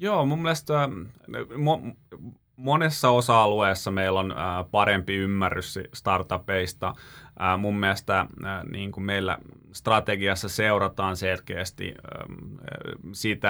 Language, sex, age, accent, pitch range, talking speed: Finnish, male, 30-49, native, 95-120 Hz, 80 wpm